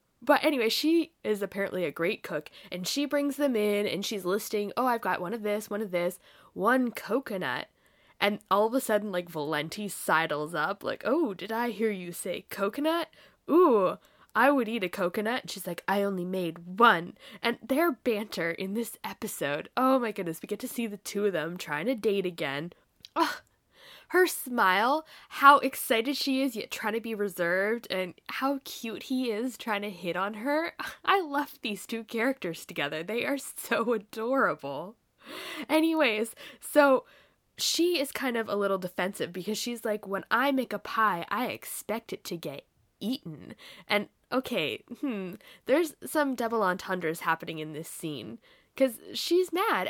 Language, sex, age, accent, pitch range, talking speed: English, female, 10-29, American, 185-260 Hz, 175 wpm